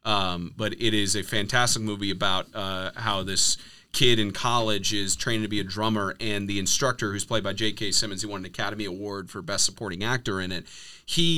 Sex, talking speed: male, 210 wpm